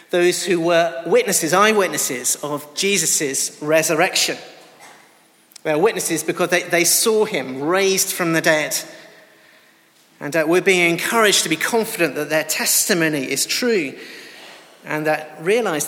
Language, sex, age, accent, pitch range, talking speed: English, male, 40-59, British, 155-190 Hz, 135 wpm